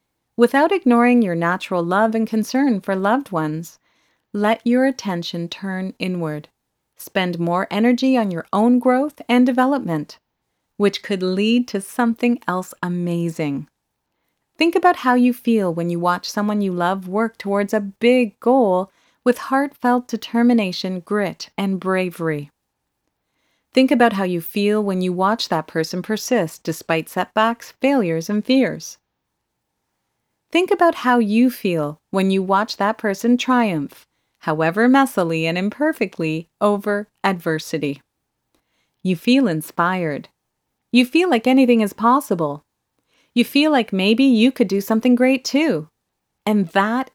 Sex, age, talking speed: female, 30-49, 135 wpm